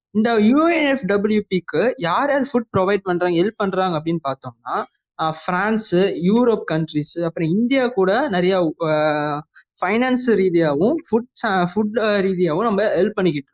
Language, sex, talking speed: Tamil, male, 120 wpm